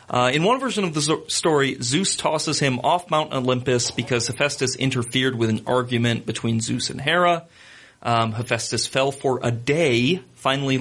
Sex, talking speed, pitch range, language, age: male, 165 wpm, 115-145 Hz, English, 40-59